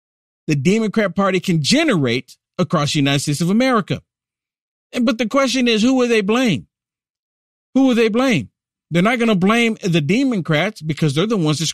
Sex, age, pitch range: male, 50-69, 150-220 Hz